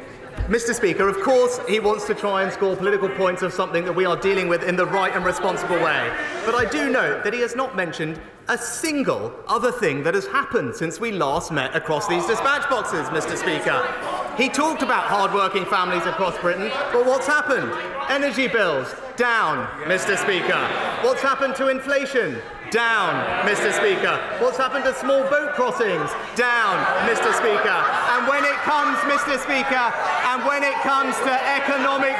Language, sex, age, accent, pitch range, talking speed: English, male, 30-49, British, 210-275 Hz, 175 wpm